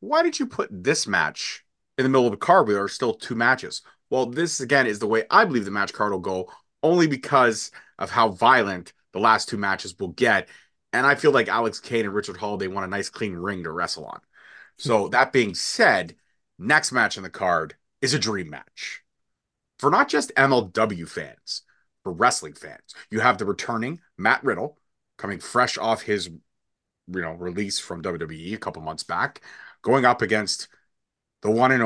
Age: 30-49